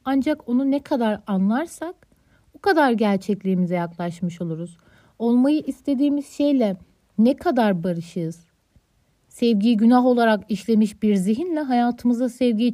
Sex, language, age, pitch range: female, Turkish, 60-79, 210-290 Hz